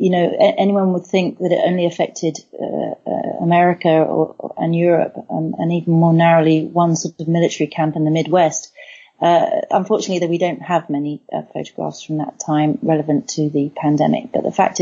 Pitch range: 155-180 Hz